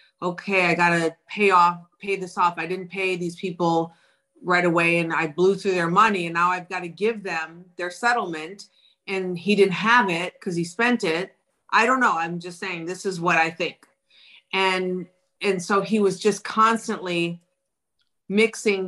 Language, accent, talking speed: English, American, 185 wpm